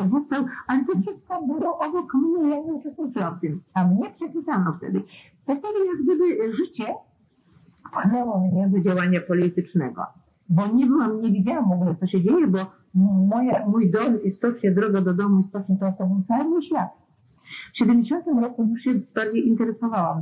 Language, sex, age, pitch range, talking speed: Polish, female, 50-69, 195-255 Hz, 160 wpm